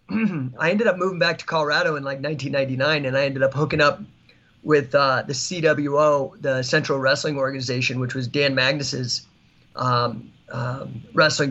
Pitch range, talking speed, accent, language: 135-150 Hz, 165 wpm, American, English